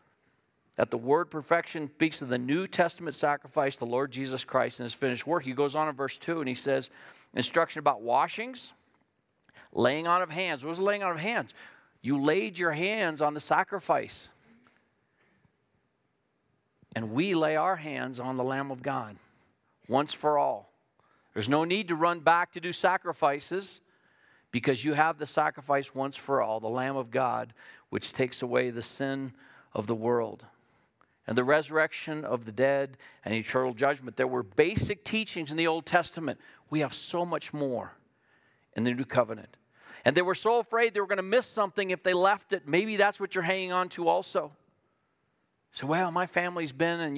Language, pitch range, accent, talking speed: English, 135-175 Hz, American, 185 wpm